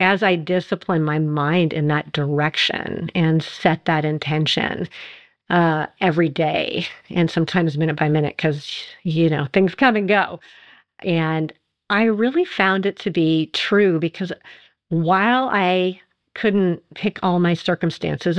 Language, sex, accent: English, female, American